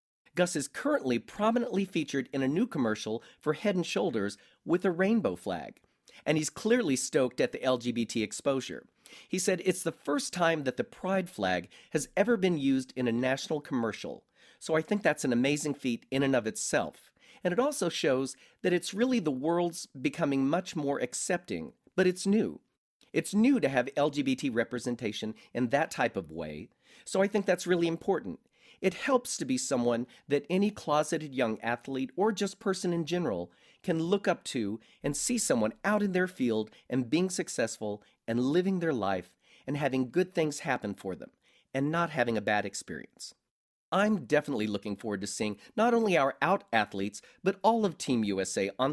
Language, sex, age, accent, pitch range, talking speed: English, male, 40-59, American, 125-195 Hz, 185 wpm